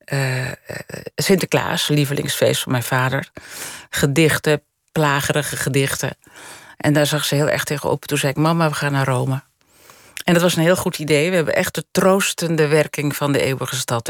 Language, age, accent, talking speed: Dutch, 40-59, Dutch, 175 wpm